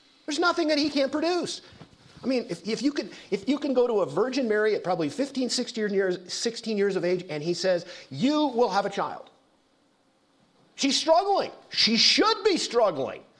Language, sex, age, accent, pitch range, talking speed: English, male, 50-69, American, 190-295 Hz, 195 wpm